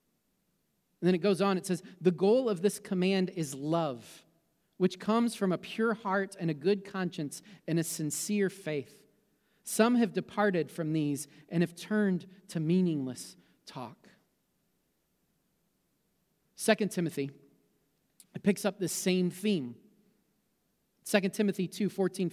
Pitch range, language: 160-200 Hz, English